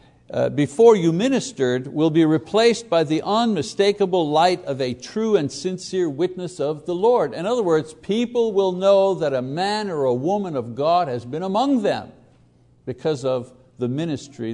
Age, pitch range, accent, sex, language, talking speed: 60-79, 130-190 Hz, American, male, English, 175 wpm